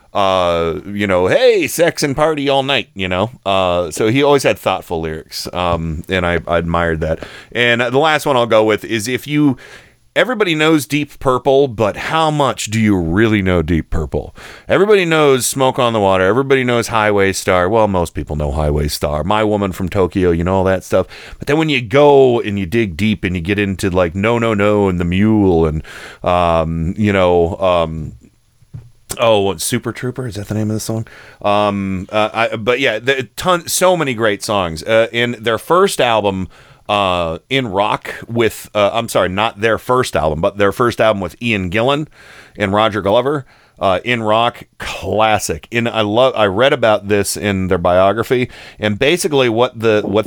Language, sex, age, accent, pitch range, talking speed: English, male, 30-49, American, 95-125 Hz, 190 wpm